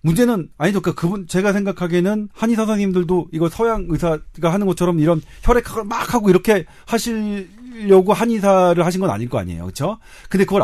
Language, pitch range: Korean, 150-200 Hz